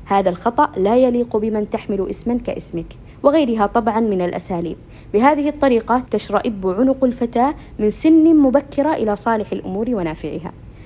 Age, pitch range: 20-39, 200-240 Hz